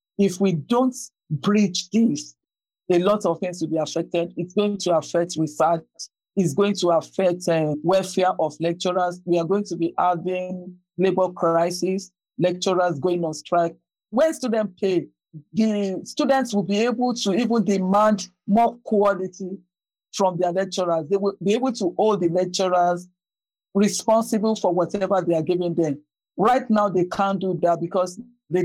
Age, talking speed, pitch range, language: 50-69, 155 wpm, 170-205 Hz, English